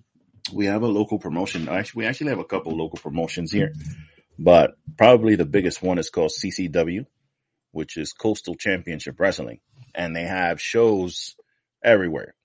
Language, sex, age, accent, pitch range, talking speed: English, male, 30-49, American, 80-115 Hz, 150 wpm